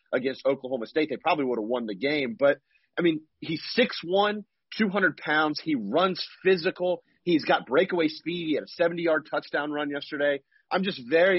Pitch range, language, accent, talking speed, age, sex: 140-180 Hz, English, American, 180 wpm, 30-49, male